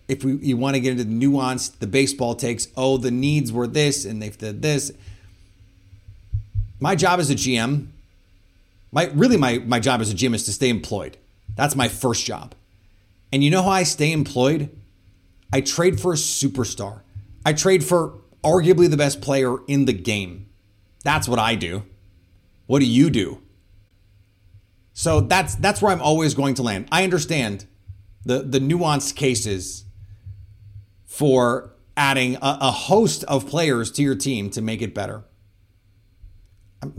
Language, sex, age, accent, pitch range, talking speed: English, male, 30-49, American, 100-150 Hz, 165 wpm